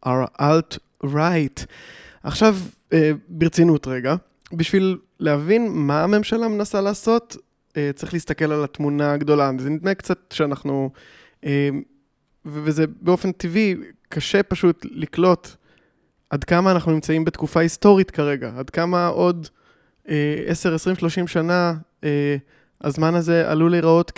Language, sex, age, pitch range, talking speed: English, male, 20-39, 150-175 Hz, 105 wpm